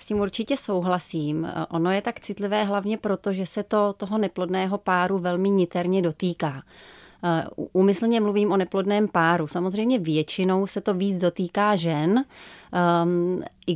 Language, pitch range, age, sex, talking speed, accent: Czech, 175-205 Hz, 30-49, female, 140 wpm, native